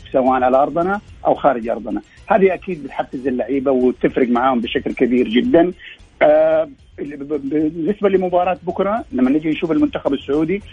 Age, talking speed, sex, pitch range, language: 50-69, 130 wpm, male, 130-180 Hz, Arabic